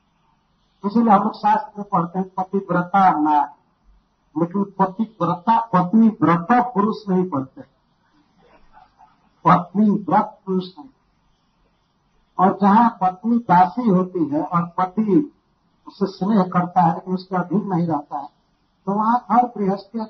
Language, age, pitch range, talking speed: Hindi, 50-69, 175-215 Hz, 120 wpm